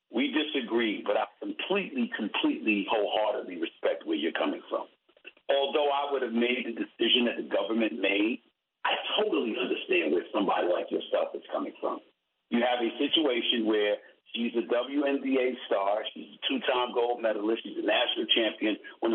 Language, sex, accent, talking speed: English, male, American, 165 wpm